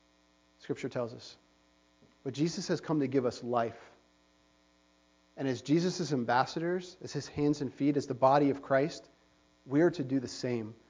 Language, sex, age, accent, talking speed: English, male, 40-59, American, 170 wpm